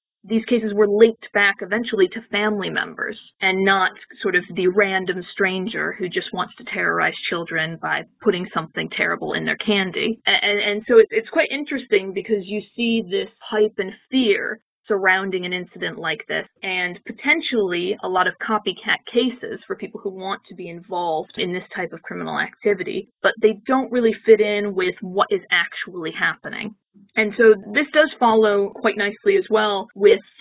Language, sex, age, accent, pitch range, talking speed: English, female, 20-39, American, 195-230 Hz, 175 wpm